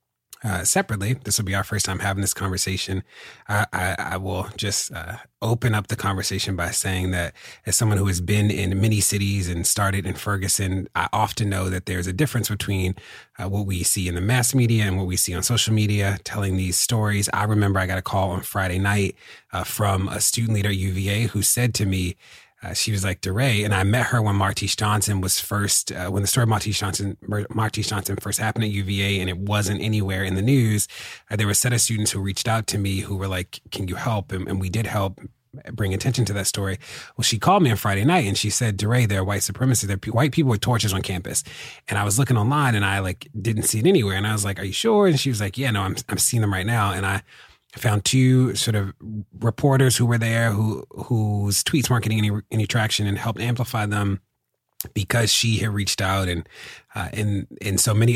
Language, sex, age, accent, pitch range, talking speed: English, male, 30-49, American, 95-110 Hz, 235 wpm